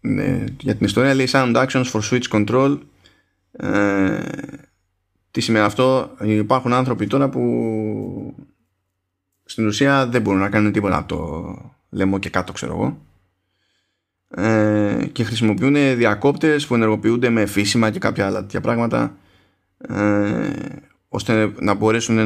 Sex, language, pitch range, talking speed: male, Greek, 95-125 Hz, 130 wpm